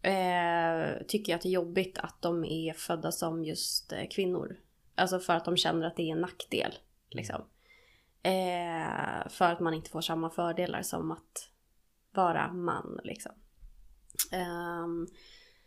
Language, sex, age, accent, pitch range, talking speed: Swedish, female, 20-39, native, 170-200 Hz, 150 wpm